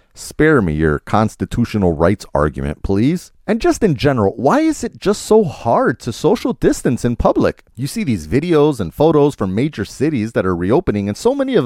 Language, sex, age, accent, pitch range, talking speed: English, male, 30-49, American, 95-145 Hz, 195 wpm